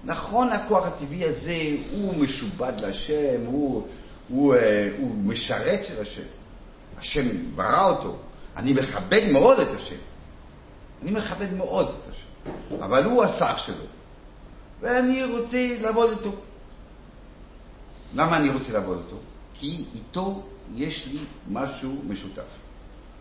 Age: 60-79